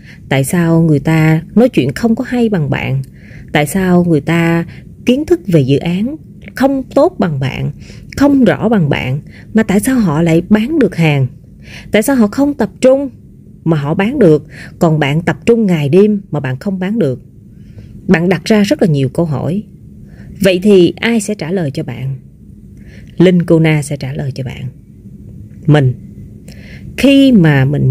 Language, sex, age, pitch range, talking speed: Vietnamese, female, 20-39, 145-210 Hz, 185 wpm